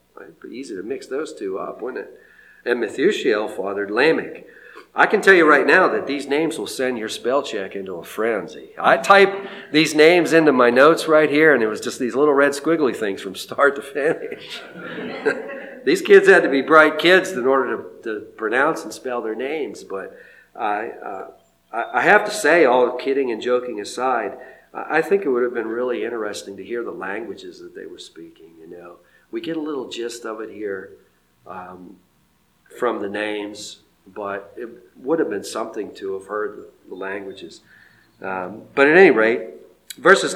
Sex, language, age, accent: male, English, 50-69, American